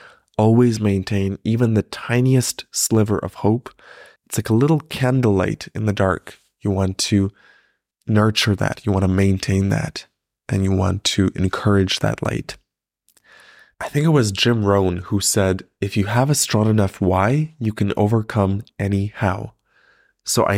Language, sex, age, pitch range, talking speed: English, male, 20-39, 95-120 Hz, 160 wpm